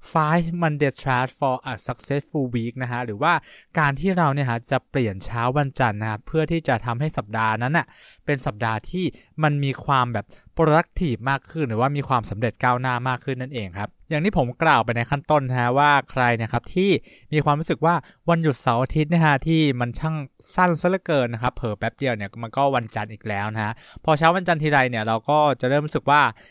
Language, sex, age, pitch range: English, male, 20-39, 115-155 Hz